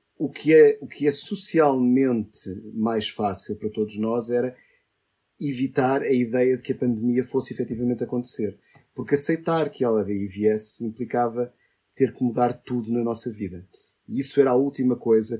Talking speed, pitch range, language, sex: 165 wpm, 110-140 Hz, Portuguese, male